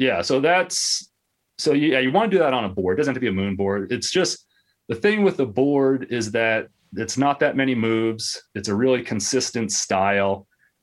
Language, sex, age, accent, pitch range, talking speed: English, male, 30-49, American, 100-130 Hz, 220 wpm